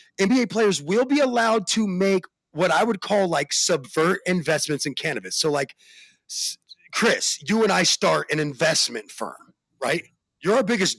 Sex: male